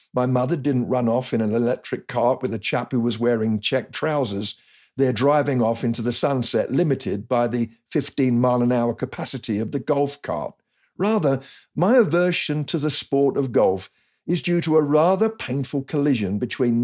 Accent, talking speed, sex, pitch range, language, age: British, 180 wpm, male, 120-160 Hz, English, 50-69